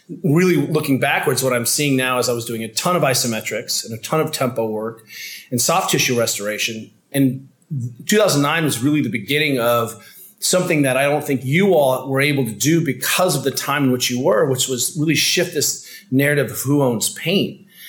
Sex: male